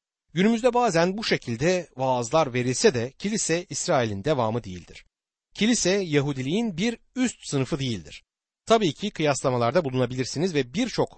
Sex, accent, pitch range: male, native, 130-190 Hz